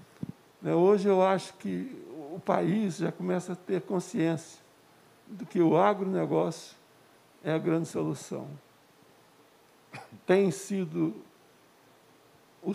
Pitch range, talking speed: 155-185 Hz, 105 wpm